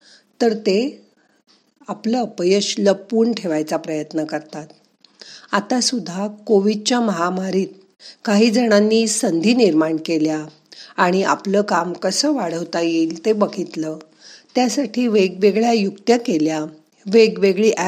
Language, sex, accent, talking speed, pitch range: Marathi, female, native, 100 wpm, 165-225 Hz